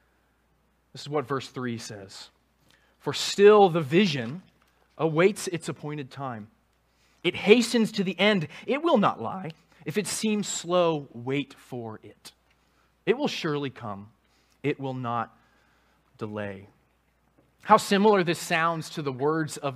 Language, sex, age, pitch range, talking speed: English, male, 20-39, 130-190 Hz, 140 wpm